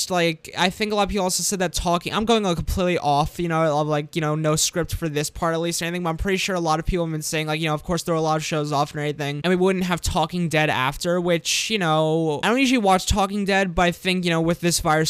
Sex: male